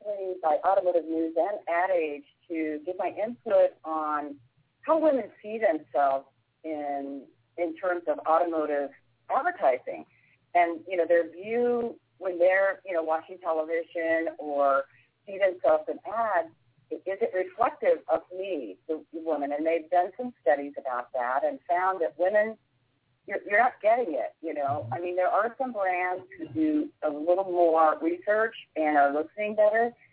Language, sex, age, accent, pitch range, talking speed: English, female, 40-59, American, 150-225 Hz, 155 wpm